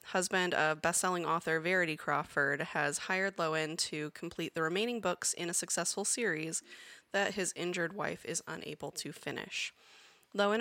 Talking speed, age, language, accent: 155 wpm, 20-39, English, American